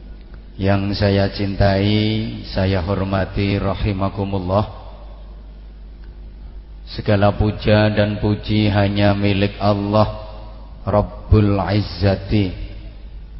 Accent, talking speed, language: Indonesian, 65 wpm, English